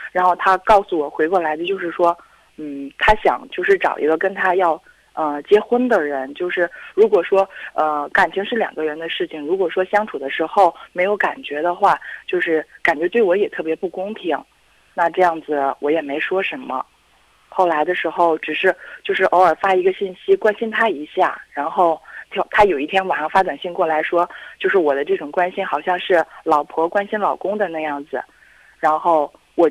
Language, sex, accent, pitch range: Chinese, female, native, 155-195 Hz